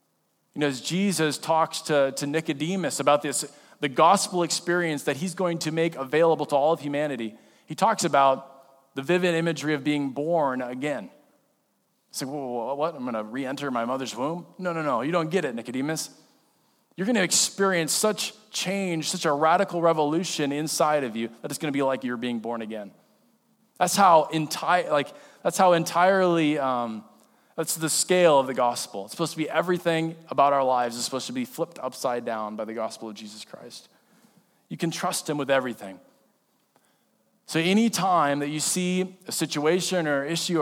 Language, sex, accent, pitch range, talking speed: English, male, American, 135-175 Hz, 190 wpm